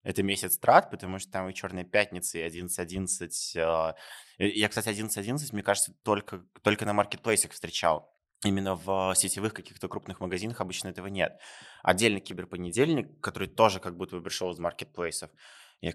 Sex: male